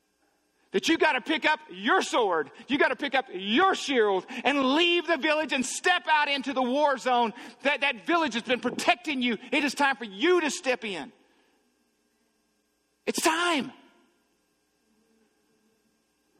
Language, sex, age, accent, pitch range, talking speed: English, male, 50-69, American, 185-295 Hz, 155 wpm